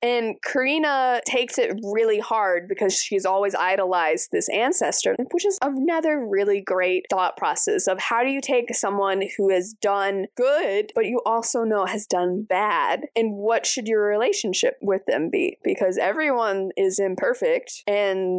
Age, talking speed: 20-39, 160 wpm